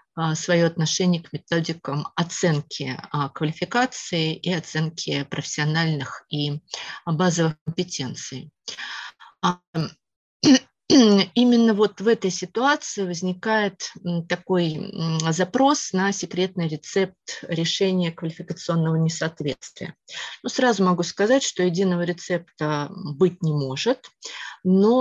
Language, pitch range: Russian, 160-200 Hz